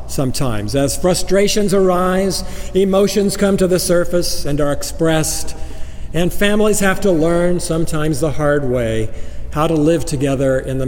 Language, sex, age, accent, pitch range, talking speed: English, male, 50-69, American, 125-170 Hz, 150 wpm